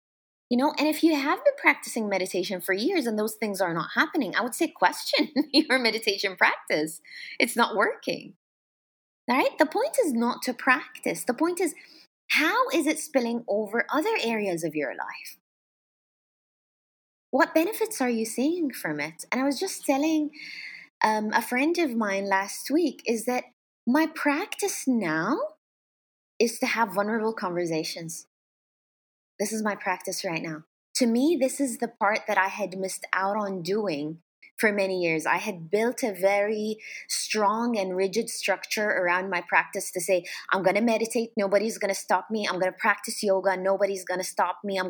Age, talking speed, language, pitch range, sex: 20-39, 170 wpm, English, 190-275 Hz, female